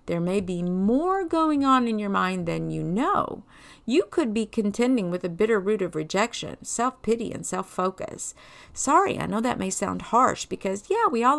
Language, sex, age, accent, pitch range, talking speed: English, female, 50-69, American, 200-285 Hz, 190 wpm